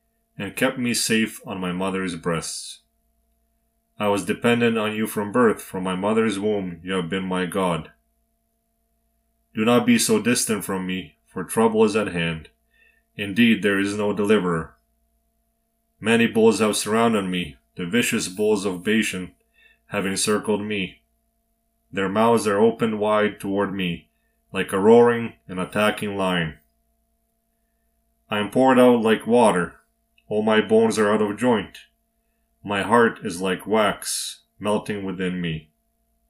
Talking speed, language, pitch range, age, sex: 145 wpm, English, 80-120 Hz, 30-49, male